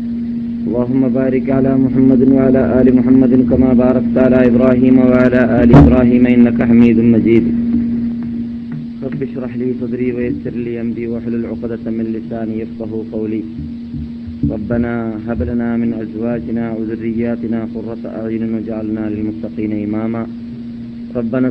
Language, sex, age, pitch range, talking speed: Malayalam, male, 30-49, 115-130 Hz, 115 wpm